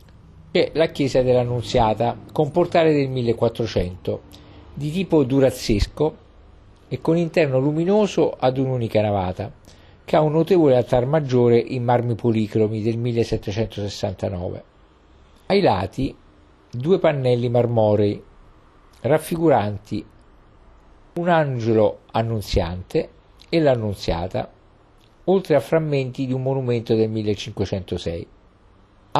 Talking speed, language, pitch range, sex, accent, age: 100 wpm, Italian, 100-135 Hz, male, native, 50-69